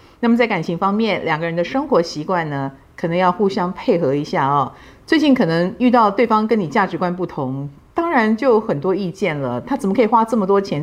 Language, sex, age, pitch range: Chinese, female, 50-69, 165-230 Hz